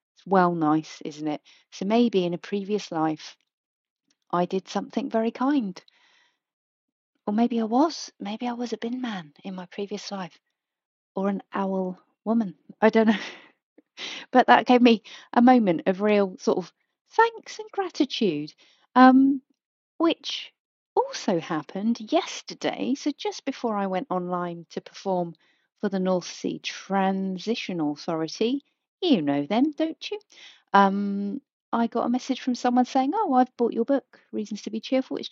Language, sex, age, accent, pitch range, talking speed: English, female, 40-59, British, 190-275 Hz, 155 wpm